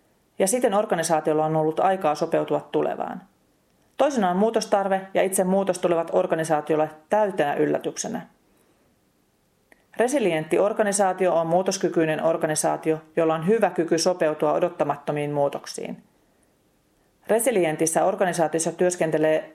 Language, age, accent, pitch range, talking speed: Finnish, 40-59, native, 155-200 Hz, 100 wpm